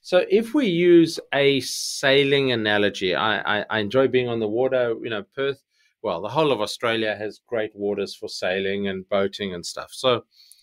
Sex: male